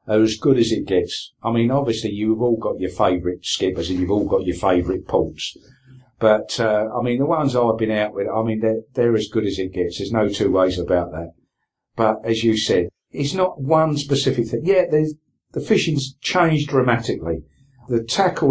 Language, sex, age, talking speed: English, male, 50-69, 205 wpm